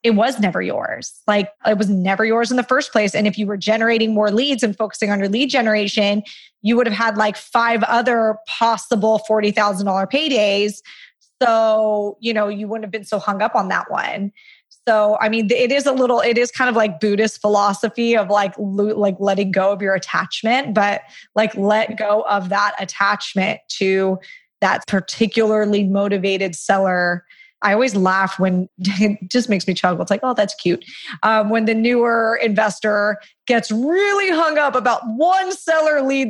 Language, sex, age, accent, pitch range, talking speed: English, female, 20-39, American, 205-235 Hz, 180 wpm